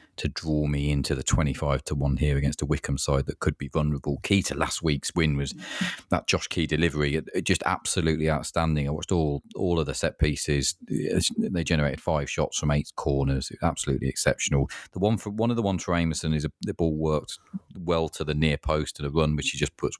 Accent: British